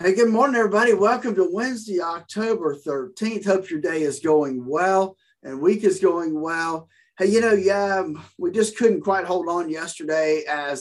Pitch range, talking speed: 140-210 Hz, 180 wpm